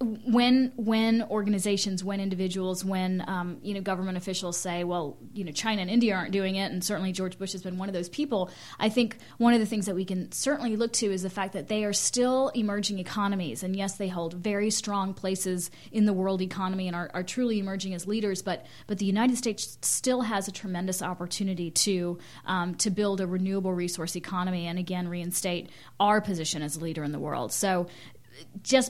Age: 30-49